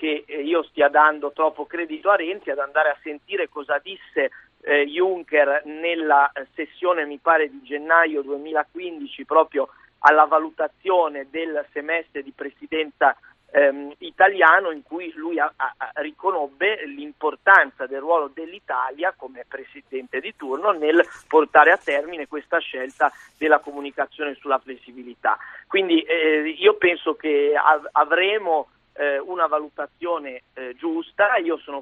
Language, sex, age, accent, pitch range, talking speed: Italian, male, 50-69, native, 145-175 Hz, 125 wpm